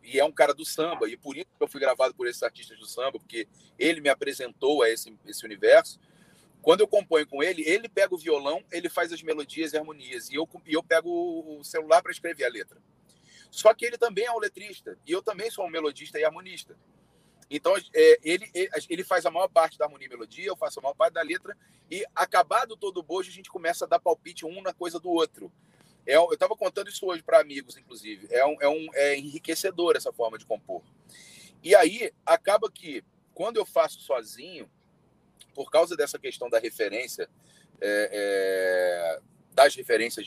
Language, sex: Portuguese, male